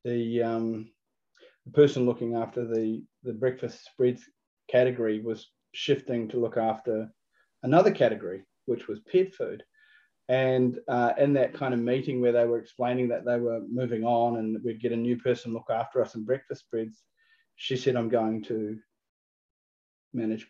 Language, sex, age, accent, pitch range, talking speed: English, male, 30-49, Australian, 115-130 Hz, 165 wpm